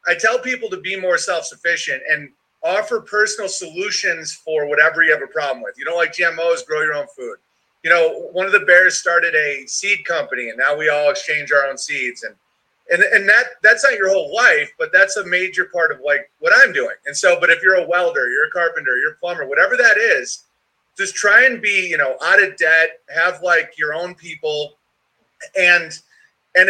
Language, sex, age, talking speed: English, male, 30-49, 215 wpm